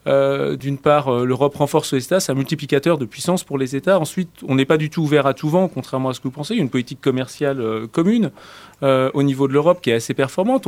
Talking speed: 260 wpm